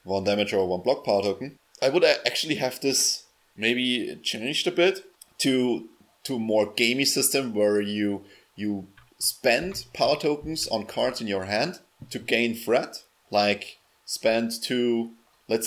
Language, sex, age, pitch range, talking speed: English, male, 30-49, 100-125 Hz, 150 wpm